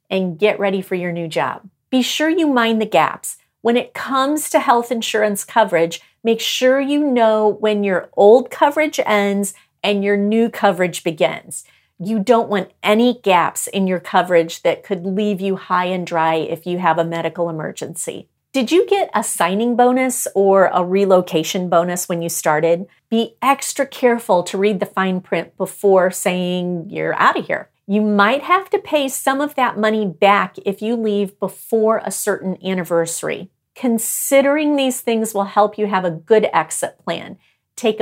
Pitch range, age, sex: 180-235 Hz, 40-59, female